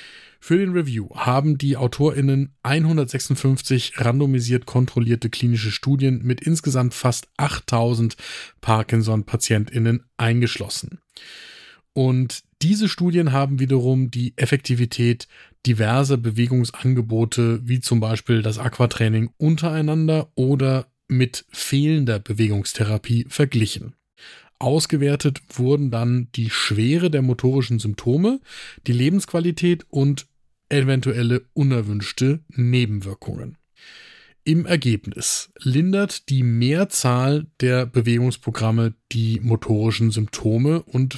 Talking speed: 90 wpm